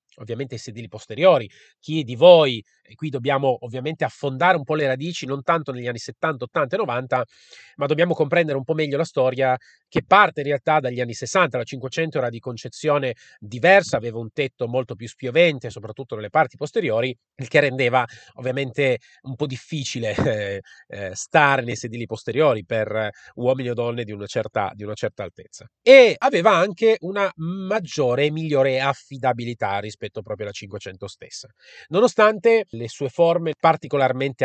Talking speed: 170 wpm